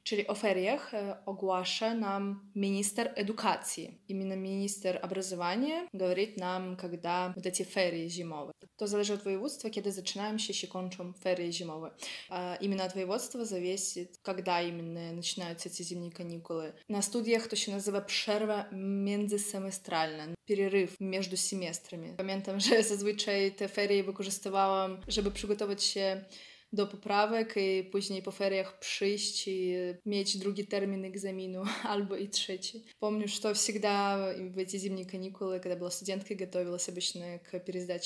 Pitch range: 180-205 Hz